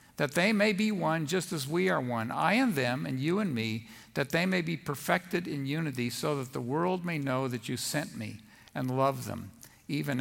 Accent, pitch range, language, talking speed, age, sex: American, 130-210 Hz, English, 225 wpm, 50-69, male